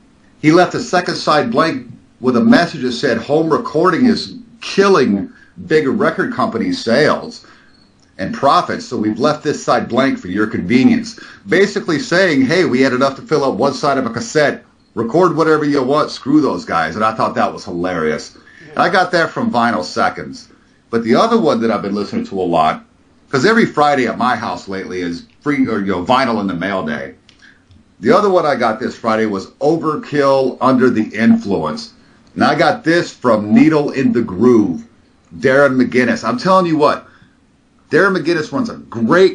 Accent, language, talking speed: American, English, 180 wpm